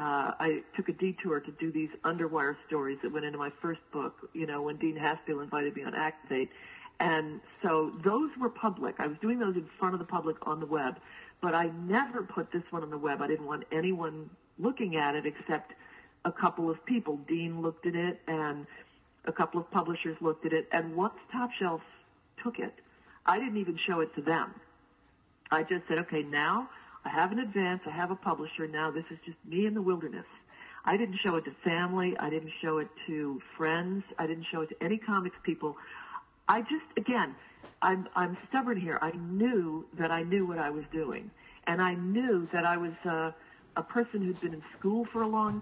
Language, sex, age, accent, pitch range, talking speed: English, female, 50-69, American, 155-190 Hz, 210 wpm